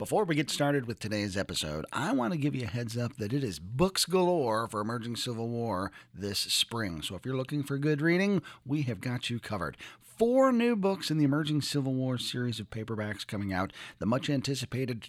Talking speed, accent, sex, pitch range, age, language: 210 wpm, American, male, 110-155 Hz, 40-59, English